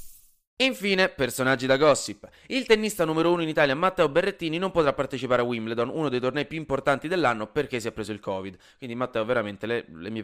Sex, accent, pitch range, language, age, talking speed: male, native, 115-165 Hz, Italian, 20-39, 205 wpm